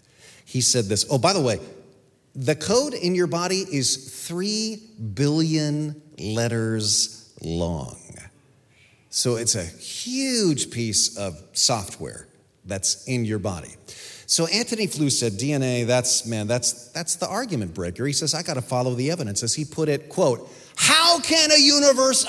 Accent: American